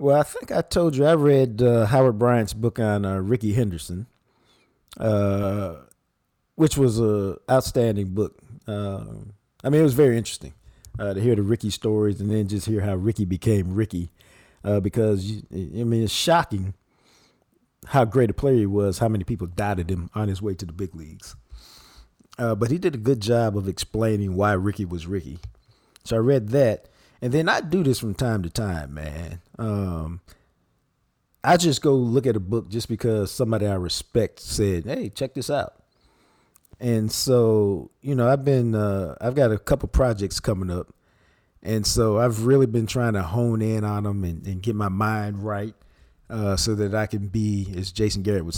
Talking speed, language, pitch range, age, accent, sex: 190 wpm, English, 95-120 Hz, 50-69, American, male